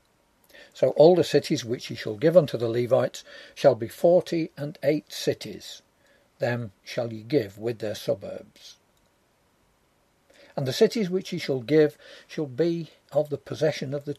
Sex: male